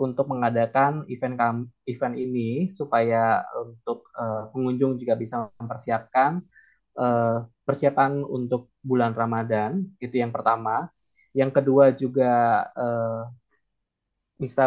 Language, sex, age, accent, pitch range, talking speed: Indonesian, male, 20-39, native, 120-135 Hz, 105 wpm